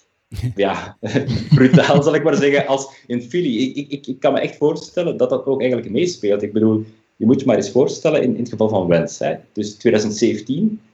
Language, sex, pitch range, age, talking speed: Dutch, male, 95-135 Hz, 30-49, 205 wpm